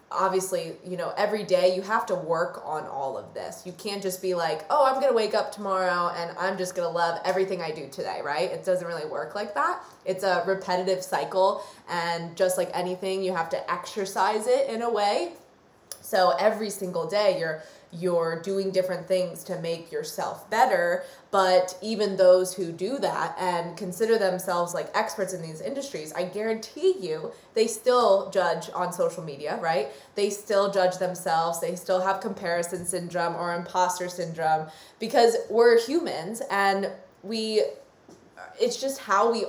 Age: 20-39